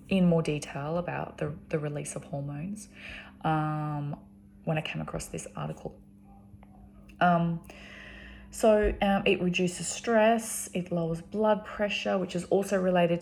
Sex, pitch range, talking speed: female, 140-180 Hz, 135 wpm